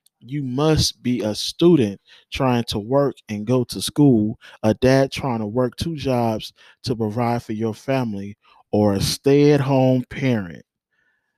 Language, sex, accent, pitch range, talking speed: English, male, American, 110-135 Hz, 150 wpm